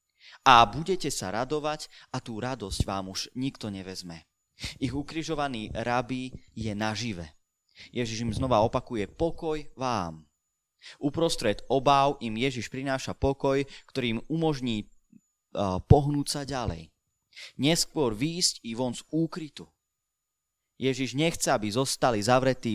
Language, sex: Slovak, male